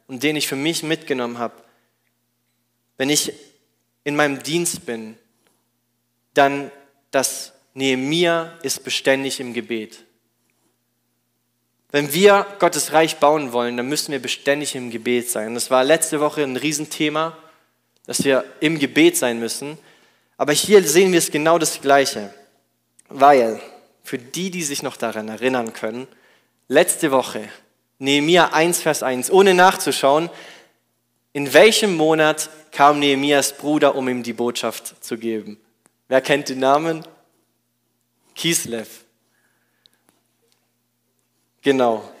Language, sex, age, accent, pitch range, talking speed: German, male, 20-39, German, 120-150 Hz, 125 wpm